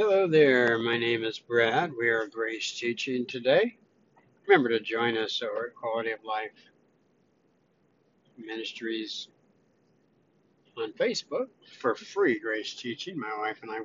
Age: 60-79